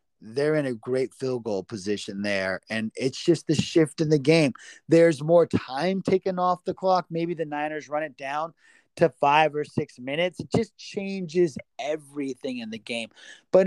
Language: English